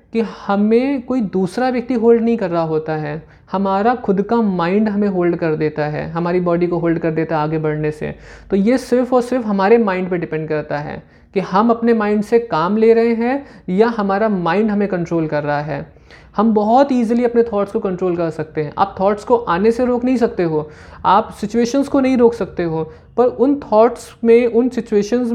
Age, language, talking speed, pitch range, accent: 20-39, Hindi, 215 wpm, 170-230 Hz, native